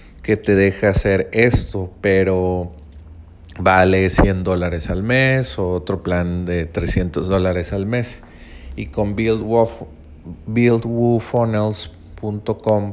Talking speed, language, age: 100 wpm, Spanish, 40-59